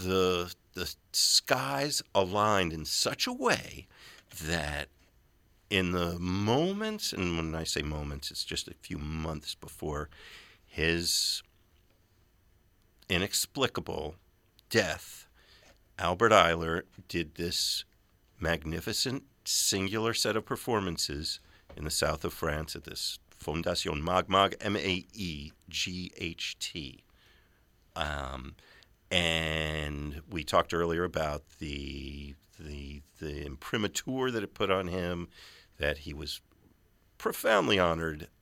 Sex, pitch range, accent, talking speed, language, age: male, 75-95 Hz, American, 100 wpm, English, 50-69